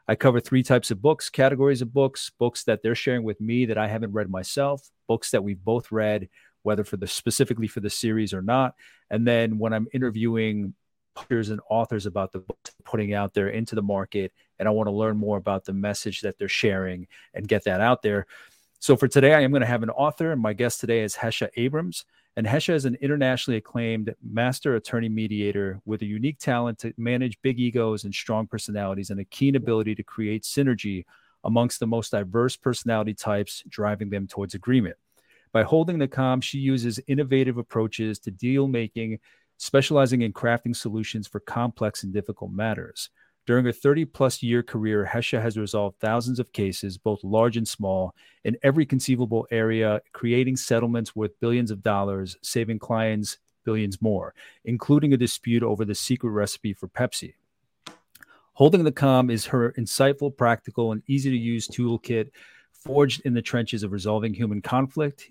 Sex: male